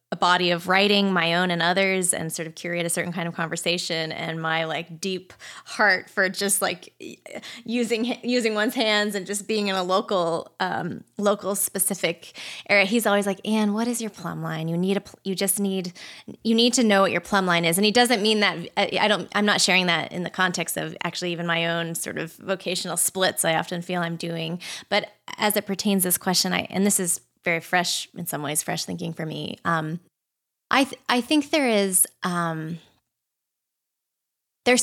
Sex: female